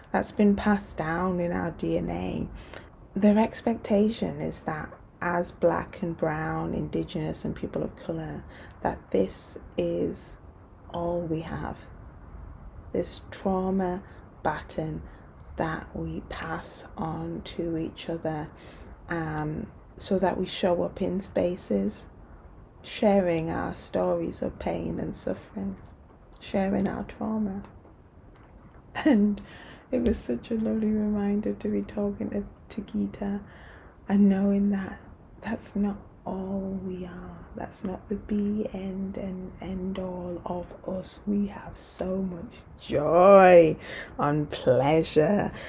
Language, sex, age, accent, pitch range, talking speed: English, female, 20-39, British, 155-200 Hz, 120 wpm